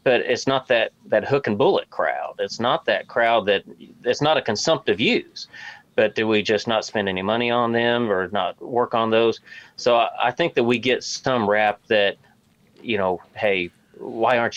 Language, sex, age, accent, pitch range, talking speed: English, male, 30-49, American, 100-125 Hz, 200 wpm